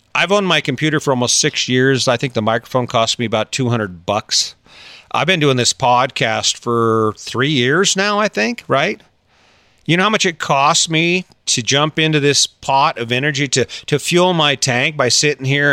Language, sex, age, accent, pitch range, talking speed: English, male, 40-59, American, 120-155 Hz, 195 wpm